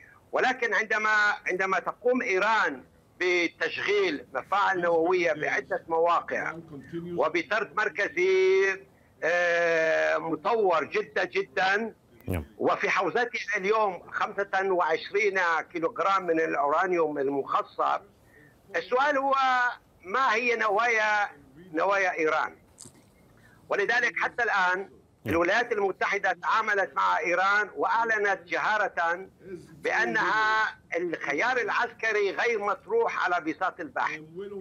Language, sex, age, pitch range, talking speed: Arabic, male, 60-79, 170-235 Hz, 85 wpm